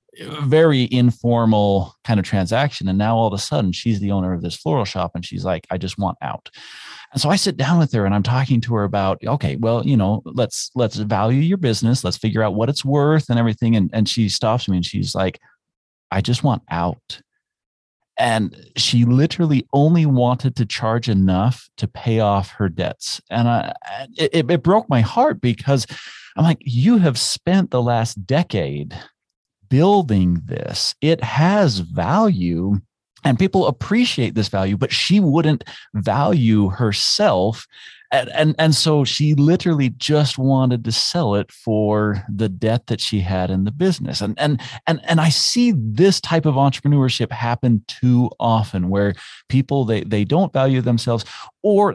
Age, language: 40-59, English